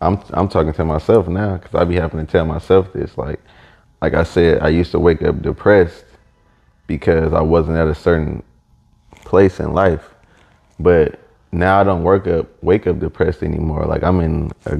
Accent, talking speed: American, 190 wpm